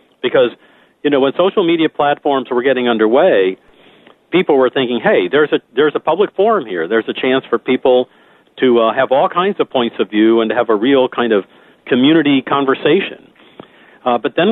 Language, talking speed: English, 195 wpm